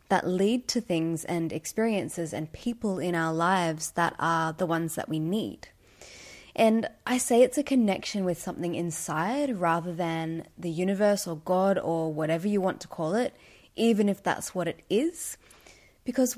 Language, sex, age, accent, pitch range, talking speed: English, female, 20-39, Australian, 165-210 Hz, 170 wpm